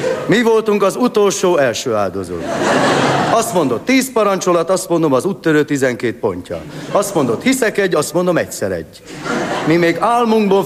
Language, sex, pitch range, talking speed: Hungarian, male, 140-195 Hz, 150 wpm